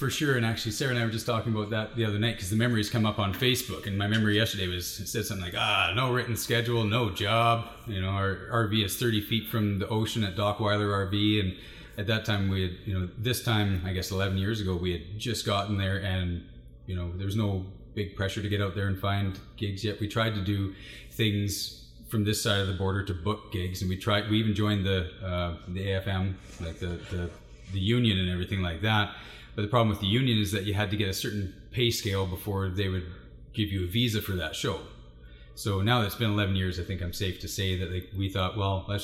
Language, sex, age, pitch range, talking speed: English, male, 30-49, 95-110 Hz, 250 wpm